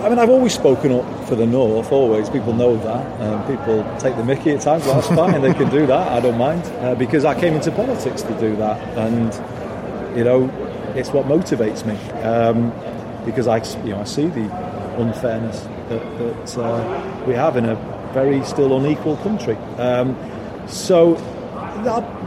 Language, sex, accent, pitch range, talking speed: English, male, British, 115-140 Hz, 180 wpm